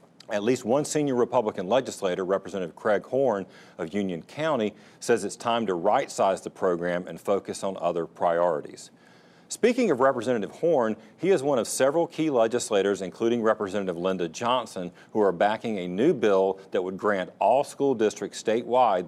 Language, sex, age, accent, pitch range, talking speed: English, male, 40-59, American, 95-120 Hz, 165 wpm